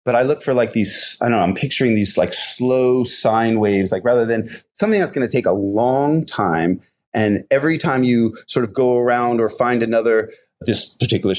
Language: English